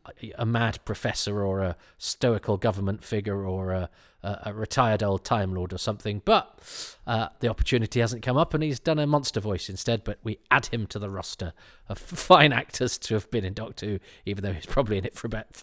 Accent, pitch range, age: British, 95-120 Hz, 40-59